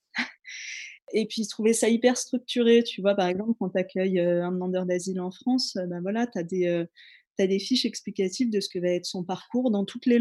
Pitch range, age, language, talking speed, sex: 180-220 Hz, 20-39, French, 215 wpm, female